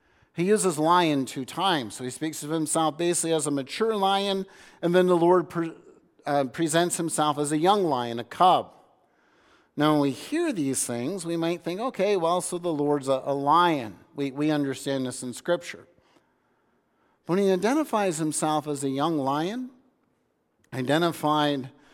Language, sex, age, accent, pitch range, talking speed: English, male, 50-69, American, 150-195 Hz, 165 wpm